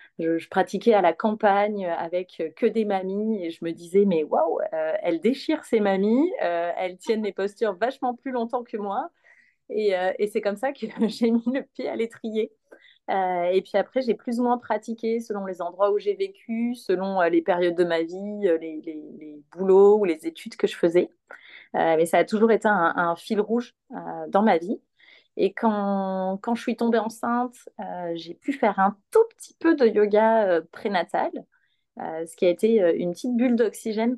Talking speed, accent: 210 wpm, French